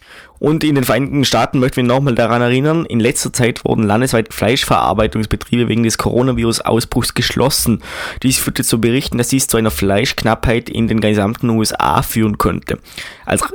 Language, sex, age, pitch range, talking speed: English, male, 20-39, 110-130 Hz, 160 wpm